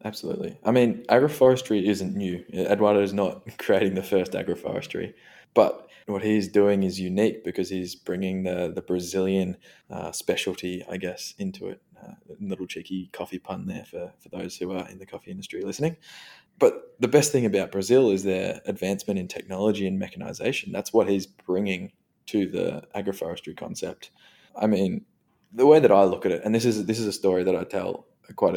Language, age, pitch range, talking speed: English, 20-39, 95-110 Hz, 185 wpm